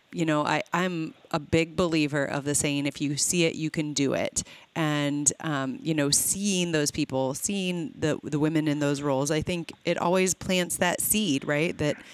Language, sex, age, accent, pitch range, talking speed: English, female, 30-49, American, 145-175 Hz, 205 wpm